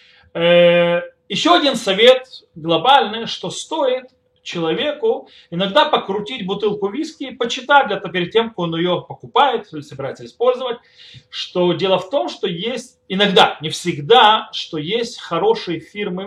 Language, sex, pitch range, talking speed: Russian, male, 165-250 Hz, 130 wpm